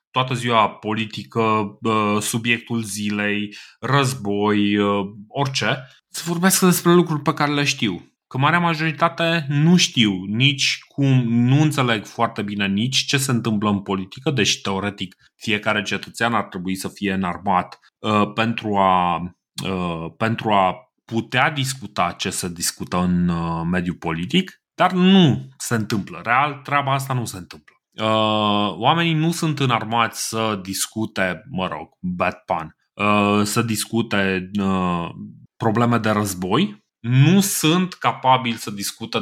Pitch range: 100-140 Hz